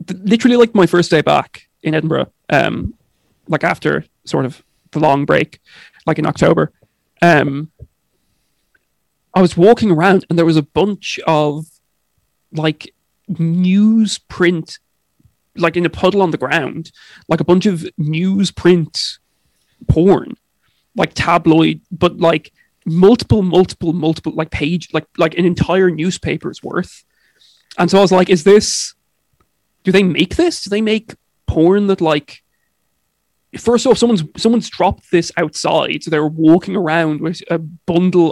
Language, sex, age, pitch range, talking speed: English, male, 20-39, 160-190 Hz, 140 wpm